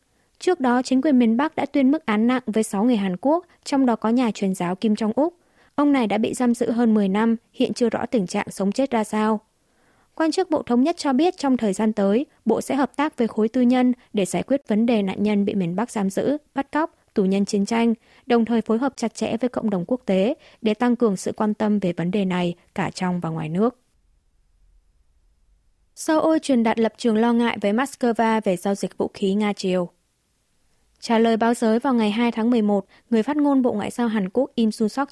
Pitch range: 205-260 Hz